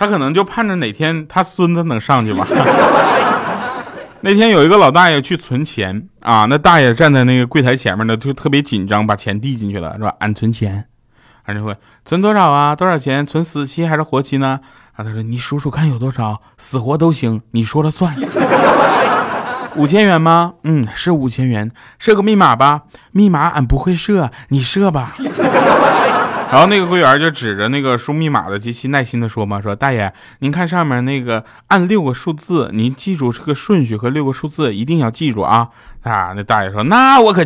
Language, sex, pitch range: Chinese, male, 110-165 Hz